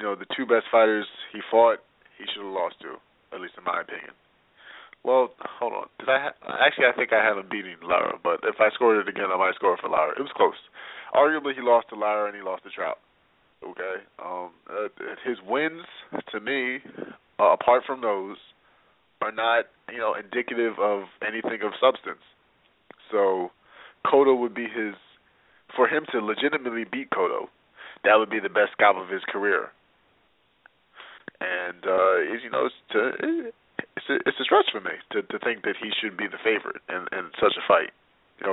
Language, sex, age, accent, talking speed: English, male, 30-49, American, 195 wpm